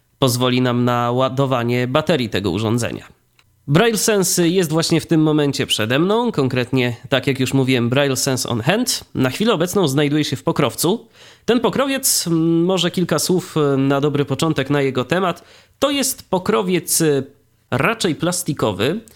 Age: 20-39